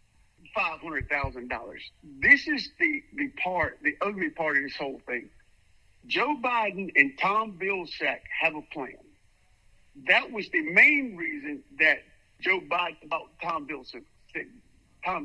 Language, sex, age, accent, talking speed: English, male, 50-69, American, 140 wpm